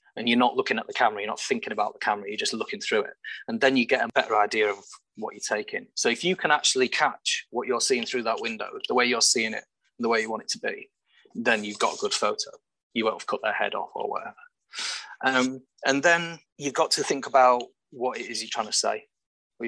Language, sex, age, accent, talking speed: English, male, 30-49, British, 255 wpm